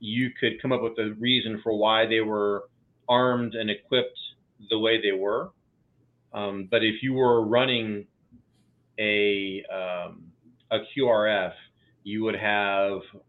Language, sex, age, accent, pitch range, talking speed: English, male, 40-59, American, 105-125 Hz, 140 wpm